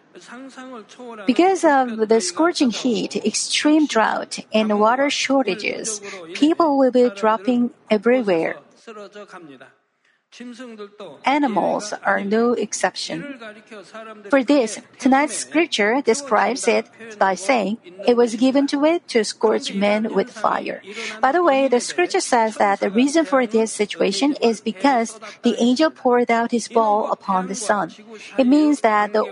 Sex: female